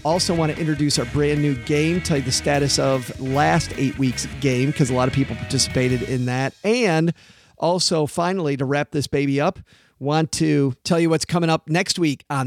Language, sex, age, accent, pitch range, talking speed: English, male, 40-59, American, 125-155 Hz, 205 wpm